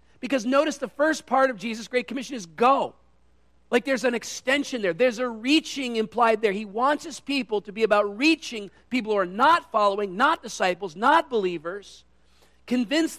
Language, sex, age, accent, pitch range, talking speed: English, male, 40-59, American, 195-255 Hz, 175 wpm